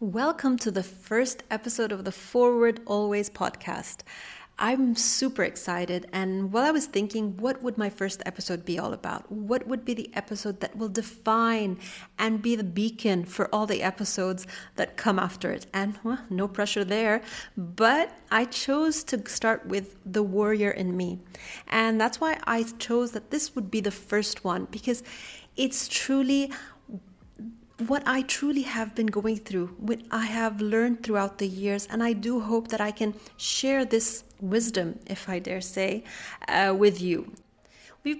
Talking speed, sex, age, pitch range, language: 170 wpm, female, 30-49, 195-235 Hz, English